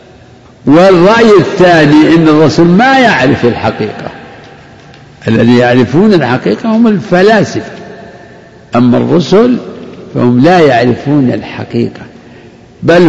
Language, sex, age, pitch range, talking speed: Arabic, male, 60-79, 125-170 Hz, 85 wpm